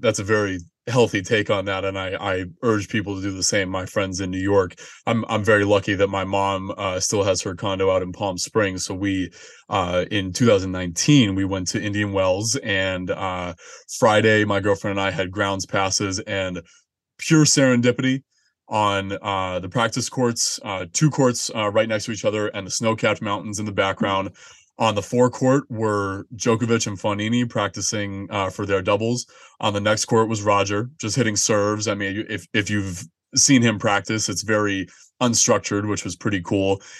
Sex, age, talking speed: male, 20-39, 190 wpm